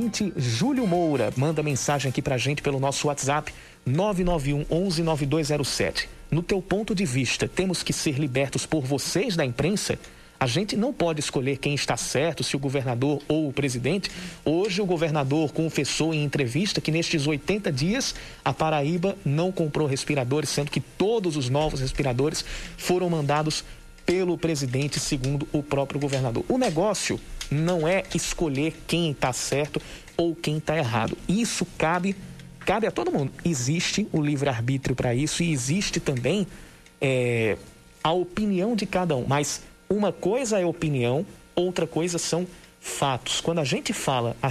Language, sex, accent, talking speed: Portuguese, male, Brazilian, 150 wpm